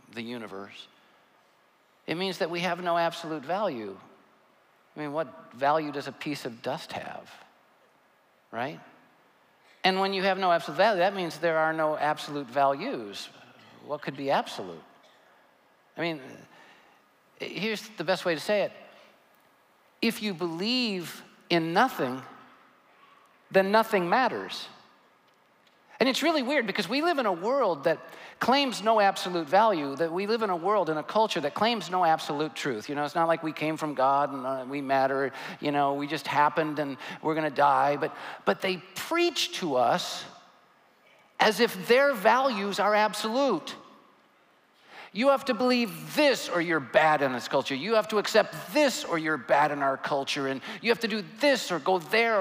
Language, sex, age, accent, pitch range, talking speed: English, male, 50-69, American, 155-225 Hz, 175 wpm